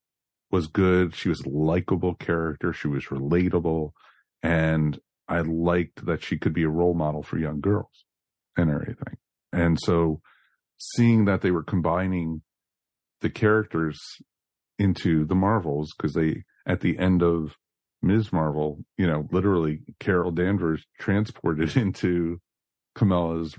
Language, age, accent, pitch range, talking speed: English, 40-59, American, 80-100 Hz, 135 wpm